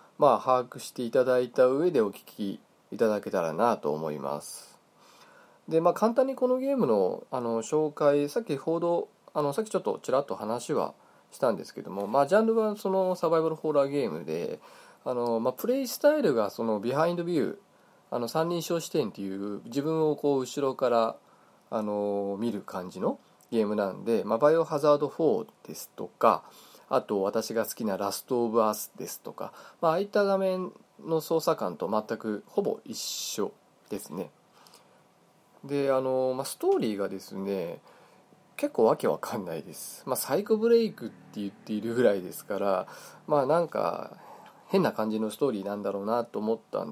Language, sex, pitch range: Japanese, male, 110-170 Hz